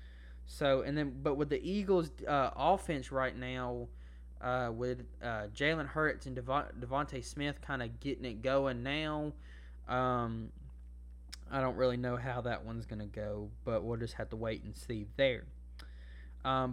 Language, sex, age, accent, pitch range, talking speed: English, male, 20-39, American, 110-150 Hz, 165 wpm